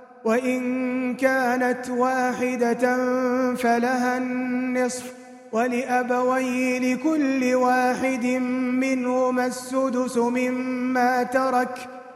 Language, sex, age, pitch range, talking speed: Arabic, male, 30-49, 250-265 Hz, 60 wpm